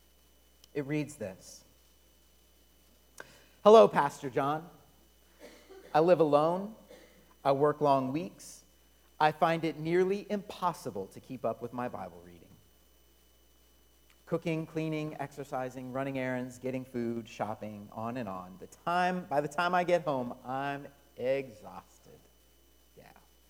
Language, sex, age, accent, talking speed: English, male, 40-59, American, 115 wpm